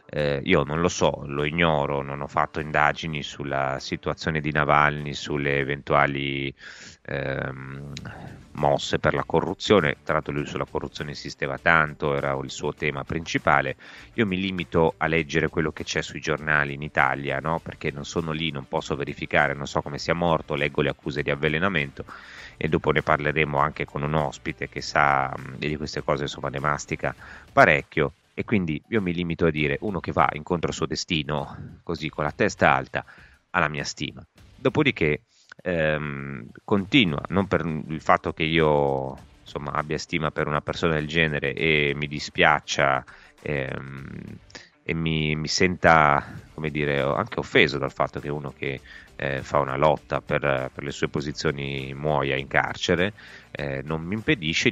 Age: 30-49